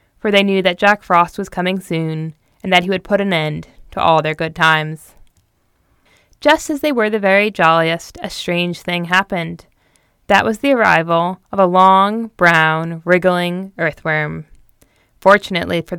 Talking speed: 165 wpm